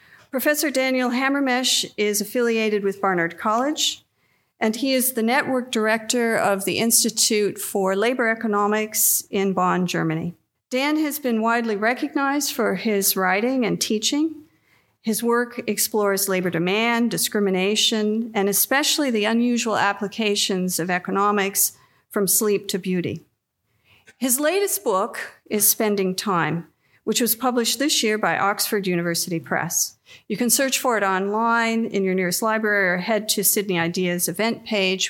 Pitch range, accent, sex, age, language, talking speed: 195-245 Hz, American, female, 50-69, English, 140 wpm